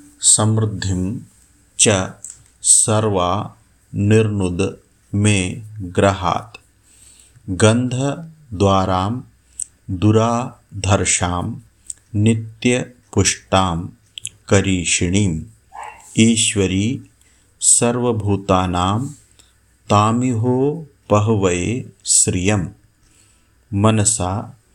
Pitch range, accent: 95-115 Hz, native